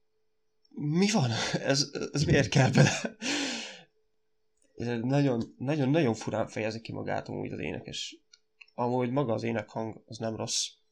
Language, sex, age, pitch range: Hungarian, male, 20-39, 115-145 Hz